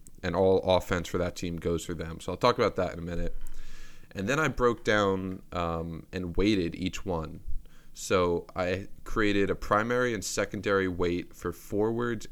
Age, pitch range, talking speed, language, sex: 20-39, 85-100 Hz, 180 wpm, English, male